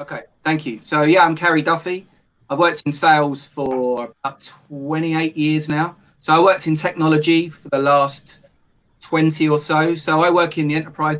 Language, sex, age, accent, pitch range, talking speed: English, male, 20-39, British, 130-155 Hz, 180 wpm